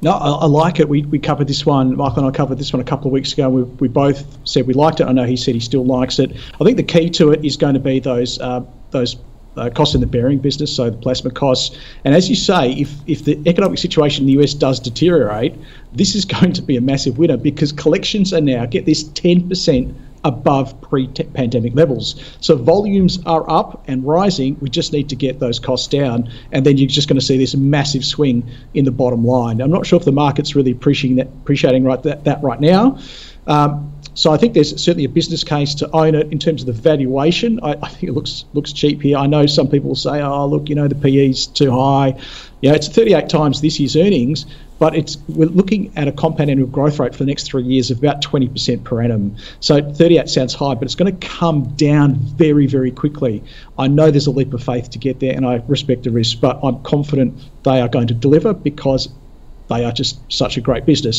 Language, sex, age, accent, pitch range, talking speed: English, male, 40-59, Australian, 130-155 Hz, 240 wpm